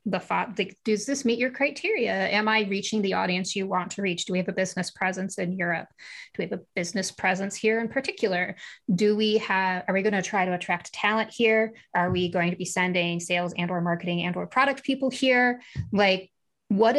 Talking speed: 210 wpm